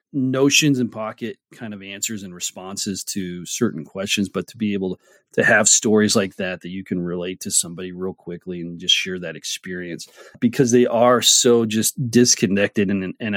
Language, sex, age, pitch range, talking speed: English, male, 30-49, 95-115 Hz, 185 wpm